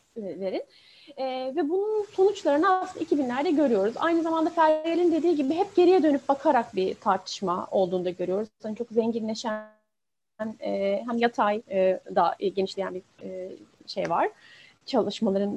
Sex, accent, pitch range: female, native, 230-315 Hz